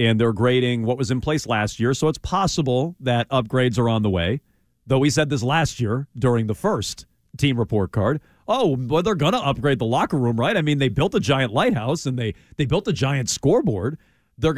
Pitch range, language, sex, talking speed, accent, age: 110-155 Hz, English, male, 225 wpm, American, 40-59